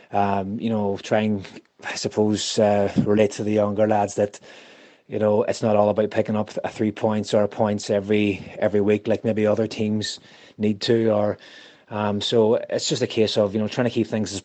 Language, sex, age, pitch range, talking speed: English, male, 20-39, 100-110 Hz, 210 wpm